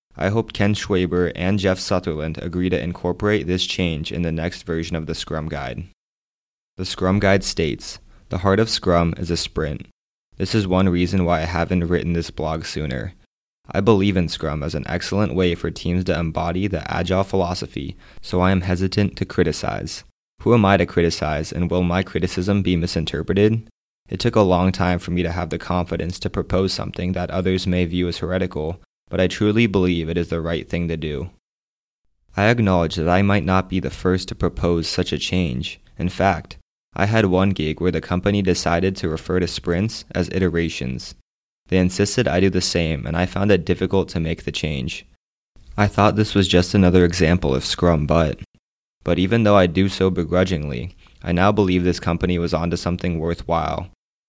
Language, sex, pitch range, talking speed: English, male, 85-95 Hz, 195 wpm